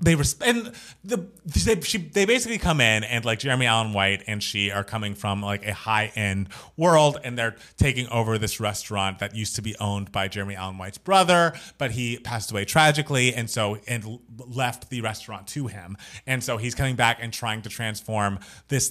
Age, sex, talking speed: 30-49, male, 200 wpm